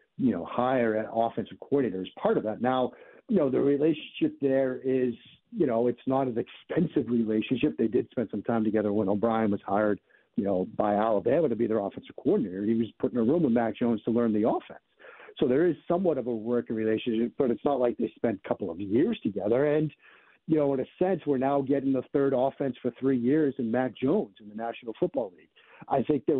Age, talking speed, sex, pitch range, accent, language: 50-69, 230 wpm, male, 115-140 Hz, American, English